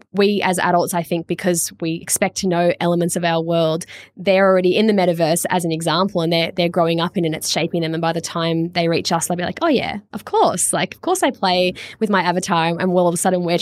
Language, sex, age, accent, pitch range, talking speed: English, female, 10-29, Australian, 170-200 Hz, 270 wpm